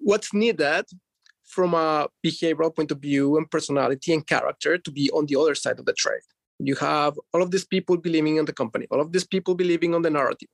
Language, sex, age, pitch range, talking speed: English, male, 30-49, 150-185 Hz, 220 wpm